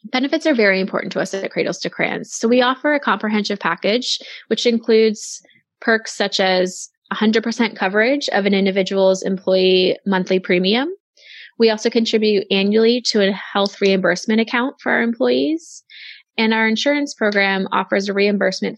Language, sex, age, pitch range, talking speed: English, female, 20-39, 190-240 Hz, 155 wpm